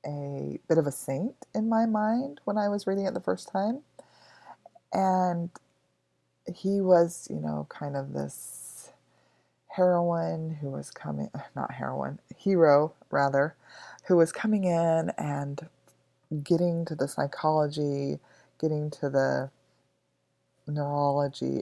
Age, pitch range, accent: 20-39, 120-165 Hz, American